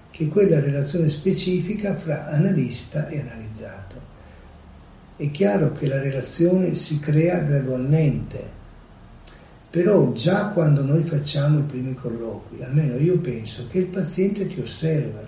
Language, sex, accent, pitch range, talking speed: Italian, male, native, 130-175 Hz, 125 wpm